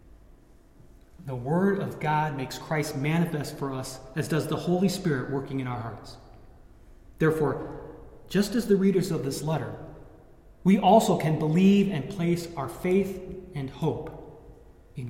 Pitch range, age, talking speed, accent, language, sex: 130-170 Hz, 30-49, 145 wpm, American, English, male